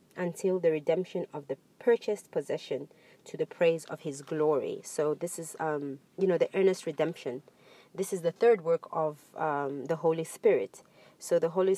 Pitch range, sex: 155-190 Hz, female